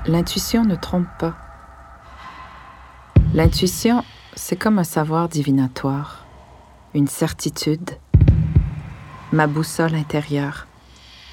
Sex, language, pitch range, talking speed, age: female, French, 140-180 Hz, 80 wpm, 40-59